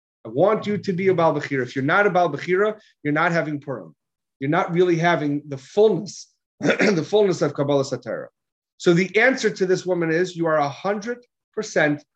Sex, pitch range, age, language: male, 145-195 Hz, 30-49, English